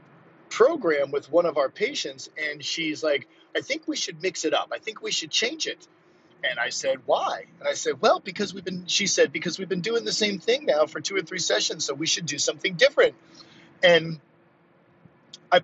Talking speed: 215 wpm